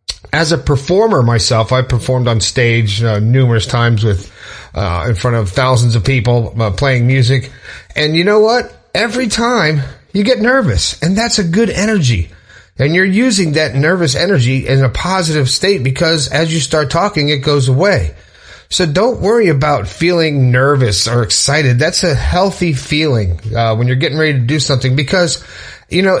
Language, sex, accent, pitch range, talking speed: English, male, American, 120-165 Hz, 175 wpm